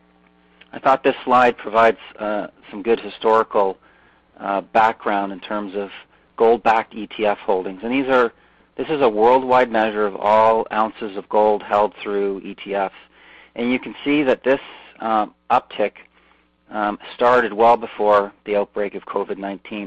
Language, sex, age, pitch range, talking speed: English, male, 40-59, 95-115 Hz, 150 wpm